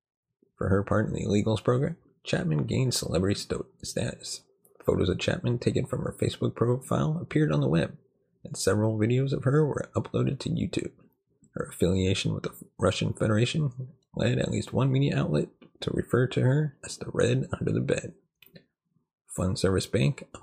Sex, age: male, 30-49